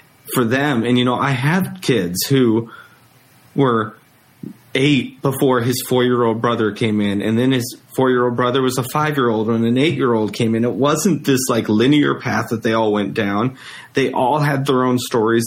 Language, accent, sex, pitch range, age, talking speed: English, American, male, 120-160 Hz, 30-49, 180 wpm